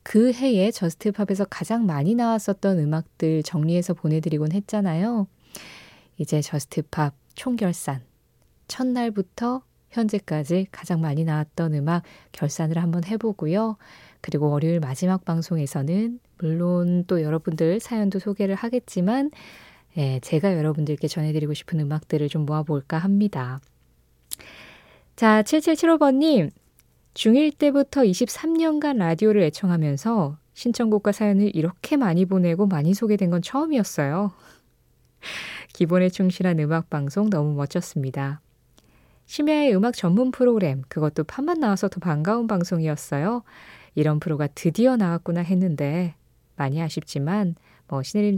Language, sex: Korean, female